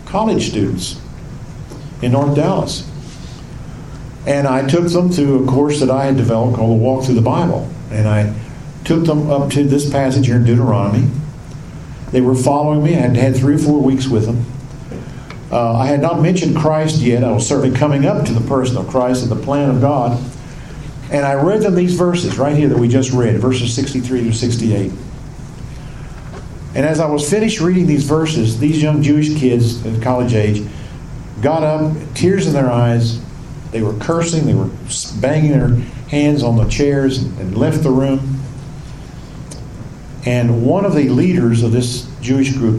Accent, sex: American, male